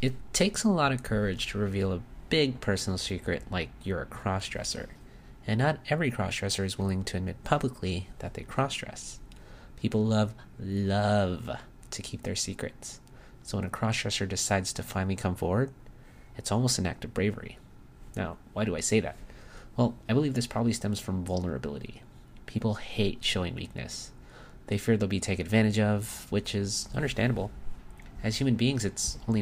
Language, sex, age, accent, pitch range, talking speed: English, male, 30-49, American, 95-115 Hz, 170 wpm